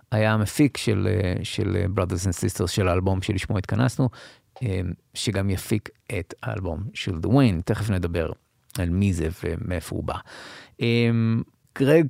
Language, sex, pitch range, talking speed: Hebrew, male, 100-125 Hz, 125 wpm